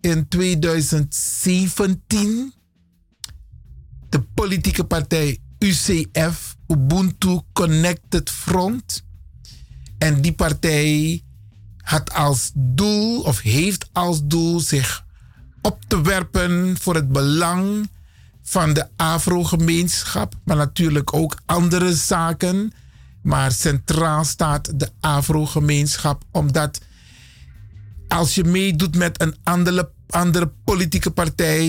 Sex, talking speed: male, 95 wpm